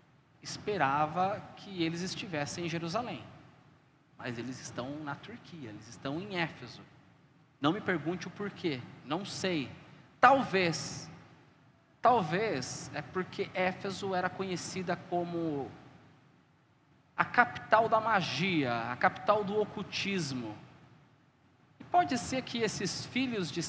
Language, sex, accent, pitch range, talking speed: Portuguese, male, Brazilian, 150-225 Hz, 110 wpm